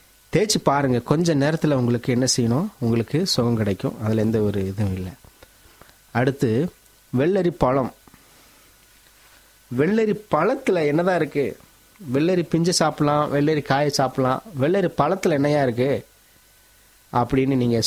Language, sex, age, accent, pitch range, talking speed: Tamil, male, 30-49, native, 110-145 Hz, 115 wpm